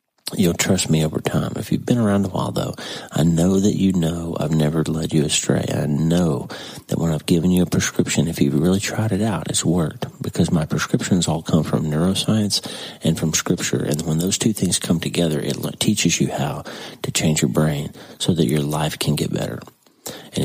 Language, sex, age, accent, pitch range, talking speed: English, male, 40-59, American, 75-95 Hz, 210 wpm